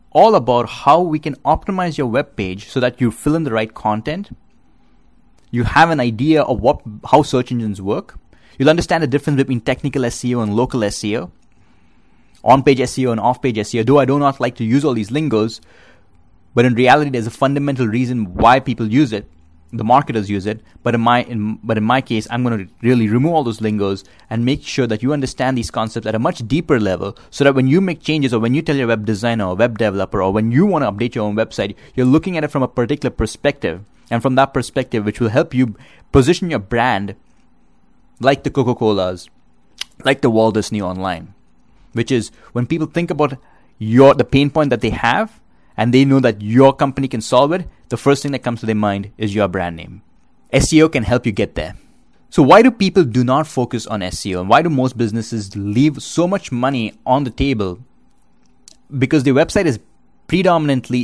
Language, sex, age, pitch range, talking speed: English, male, 30-49, 110-140 Hz, 210 wpm